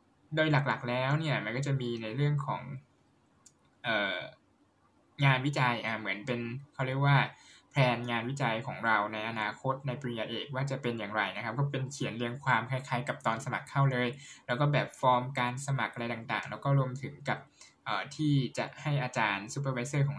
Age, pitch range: 10-29, 115-140 Hz